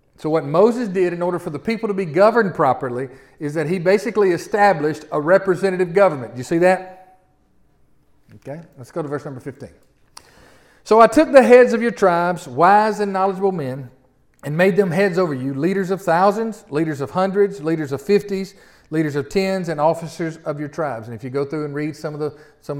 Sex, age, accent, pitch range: male, 40-59, American, 140-195 Hz